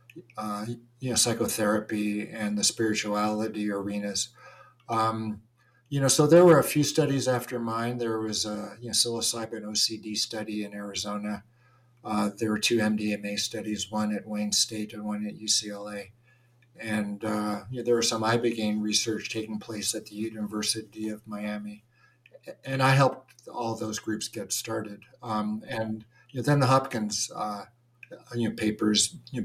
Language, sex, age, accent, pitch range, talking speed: English, male, 50-69, American, 105-120 Hz, 160 wpm